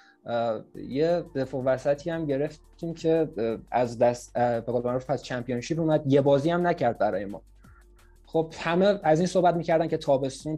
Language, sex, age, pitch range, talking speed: Persian, male, 20-39, 120-150 Hz, 155 wpm